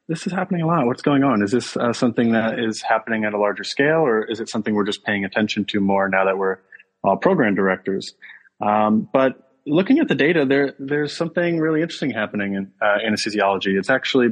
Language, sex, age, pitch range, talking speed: English, male, 30-49, 100-120 Hz, 220 wpm